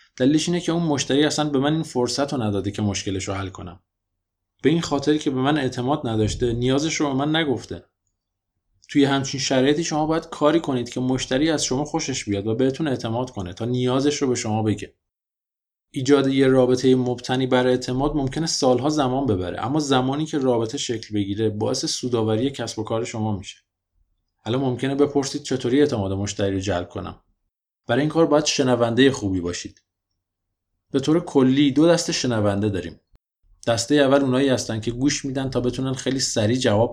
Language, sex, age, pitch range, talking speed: Persian, male, 20-39, 110-145 Hz, 175 wpm